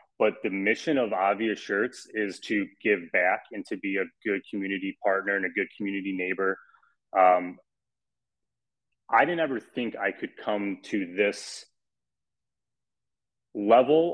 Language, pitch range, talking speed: English, 95-125 Hz, 140 wpm